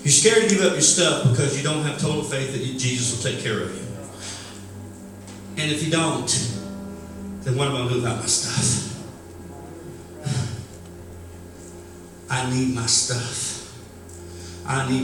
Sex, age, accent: male, 50-69, American